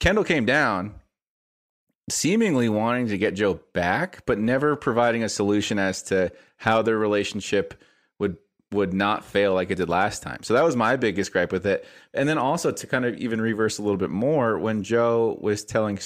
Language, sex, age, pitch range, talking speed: English, male, 30-49, 95-115 Hz, 195 wpm